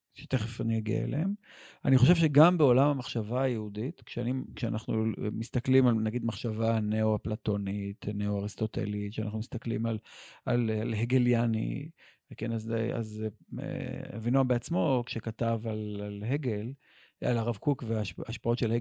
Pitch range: 115-140 Hz